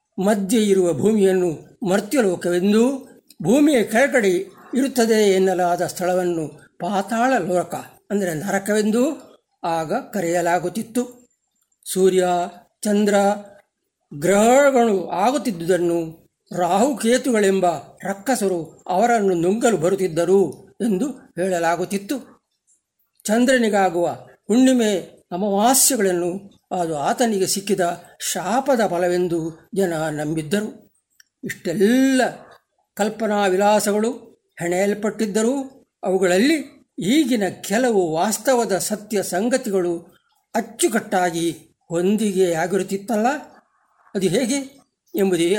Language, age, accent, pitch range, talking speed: Kannada, 60-79, native, 180-245 Hz, 70 wpm